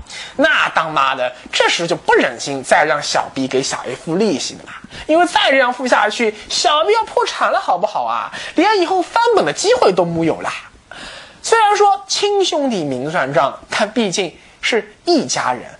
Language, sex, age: Chinese, male, 20-39